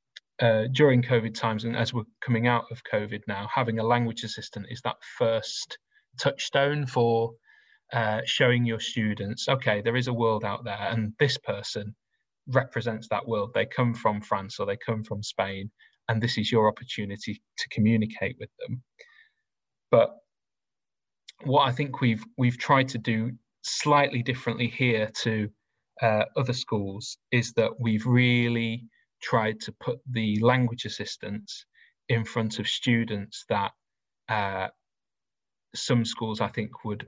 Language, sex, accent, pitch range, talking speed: English, male, British, 105-120 Hz, 150 wpm